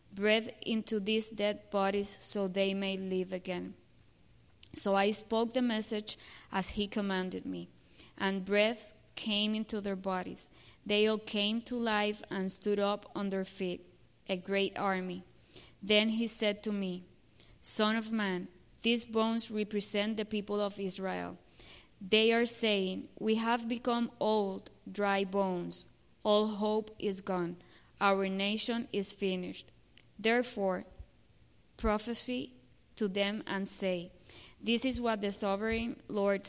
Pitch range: 190-220 Hz